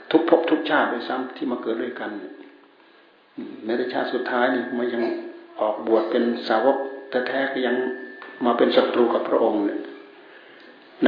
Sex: male